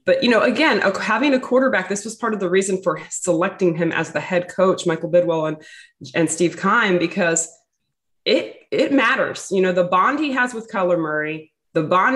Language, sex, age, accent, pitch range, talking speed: English, female, 20-39, American, 160-210 Hz, 200 wpm